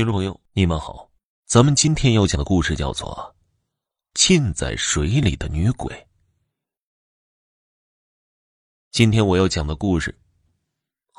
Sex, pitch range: male, 80-100 Hz